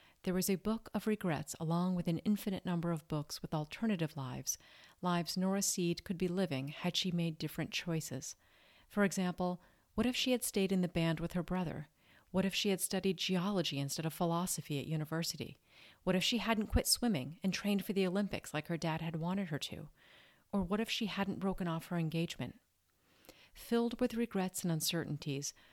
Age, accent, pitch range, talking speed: 40-59, American, 160-195 Hz, 195 wpm